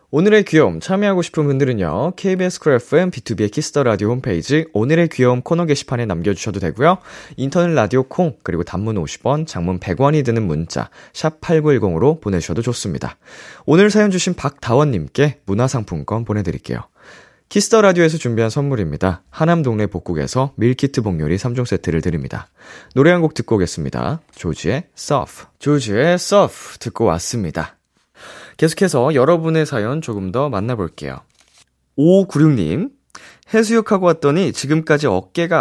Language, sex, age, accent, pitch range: Korean, male, 20-39, native, 105-160 Hz